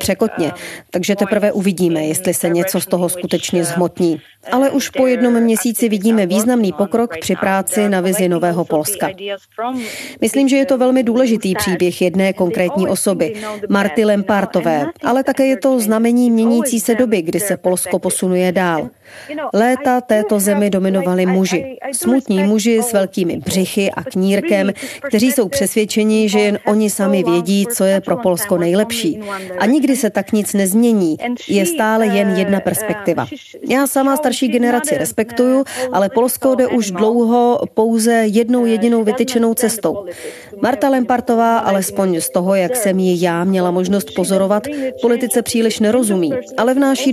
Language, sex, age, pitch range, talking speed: Czech, female, 40-59, 185-240 Hz, 150 wpm